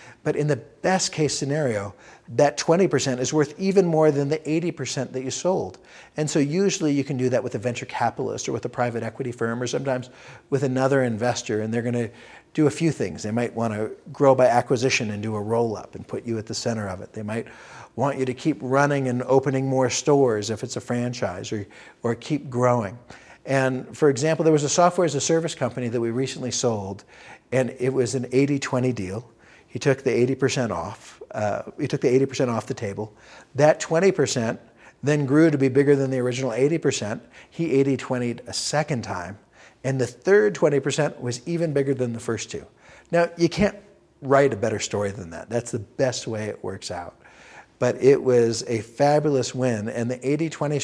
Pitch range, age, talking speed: 120-145 Hz, 50-69, 205 wpm